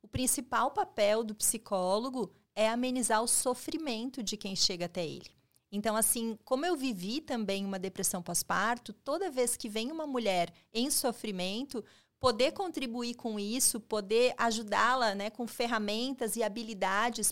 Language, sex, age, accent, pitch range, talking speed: Portuguese, female, 30-49, Brazilian, 210-265 Hz, 145 wpm